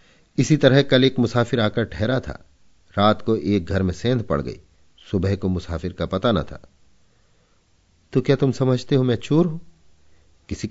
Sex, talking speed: male, 180 wpm